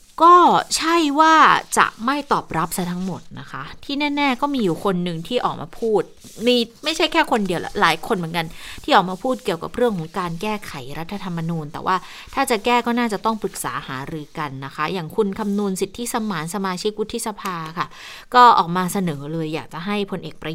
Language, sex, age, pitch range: Thai, female, 20-39, 175-225 Hz